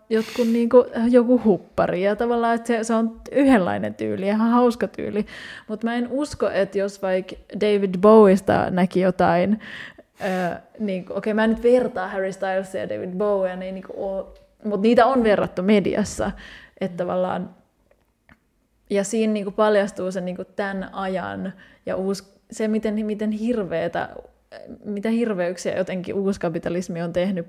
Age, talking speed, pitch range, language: 20-39, 150 wpm, 185-220 Hz, Finnish